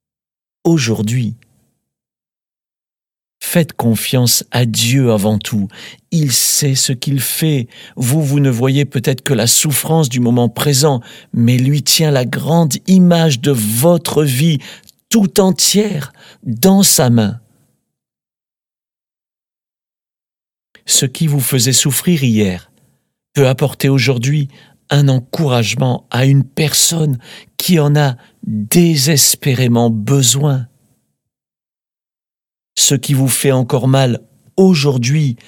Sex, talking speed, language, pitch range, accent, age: male, 110 wpm, French, 115-145 Hz, French, 50-69